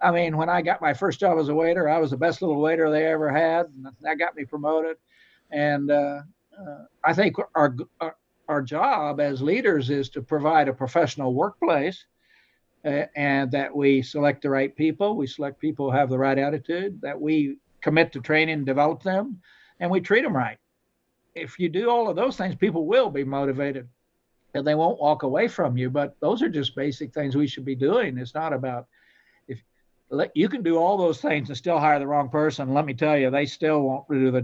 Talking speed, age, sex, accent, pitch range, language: 215 wpm, 60-79, male, American, 140-165 Hz, English